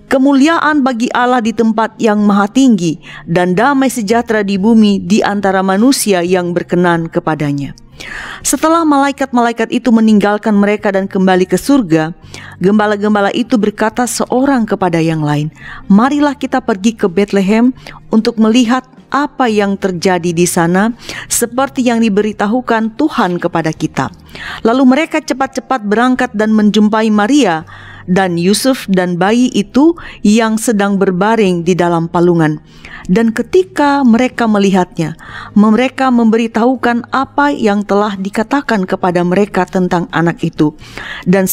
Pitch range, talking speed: 185-245 Hz, 125 wpm